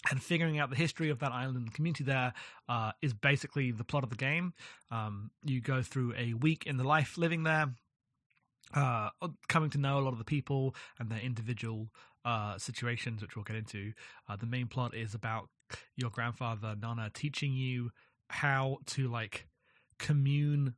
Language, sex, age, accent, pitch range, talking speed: English, male, 30-49, British, 120-145 Hz, 180 wpm